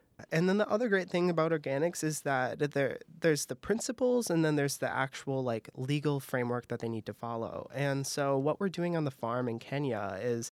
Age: 30-49